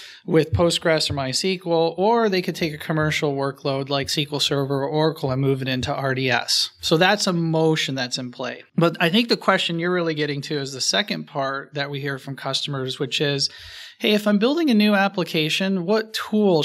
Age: 30-49